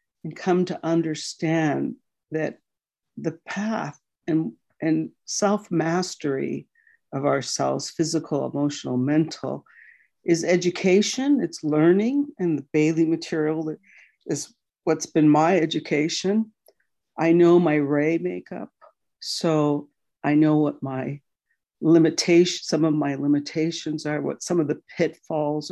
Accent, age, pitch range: American, 60-79, 145-170 Hz